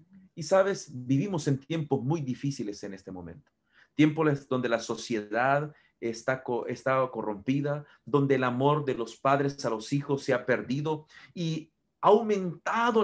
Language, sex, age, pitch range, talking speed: Spanish, male, 40-59, 130-185 Hz, 145 wpm